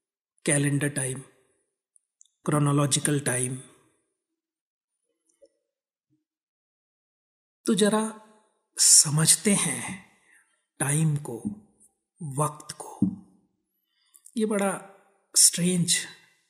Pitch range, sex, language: 145-210 Hz, male, Hindi